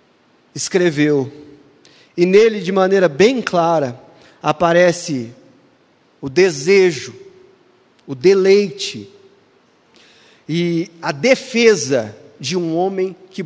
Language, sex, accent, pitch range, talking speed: Portuguese, male, Brazilian, 145-190 Hz, 85 wpm